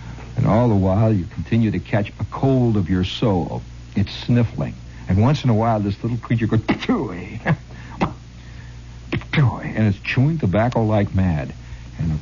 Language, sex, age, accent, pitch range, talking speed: English, male, 60-79, American, 90-140 Hz, 155 wpm